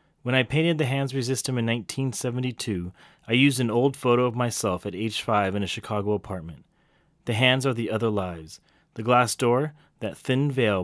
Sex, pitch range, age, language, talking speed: male, 105-140 Hz, 30-49, English, 195 wpm